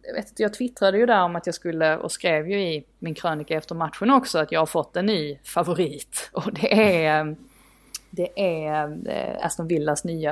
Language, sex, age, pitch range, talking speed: Swedish, female, 20-39, 155-210 Hz, 200 wpm